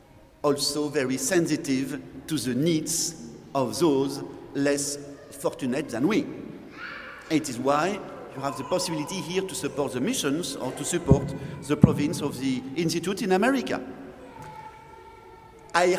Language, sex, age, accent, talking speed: English, male, 50-69, French, 130 wpm